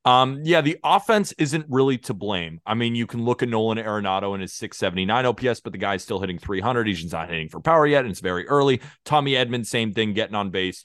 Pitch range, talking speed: 100-130 Hz, 240 wpm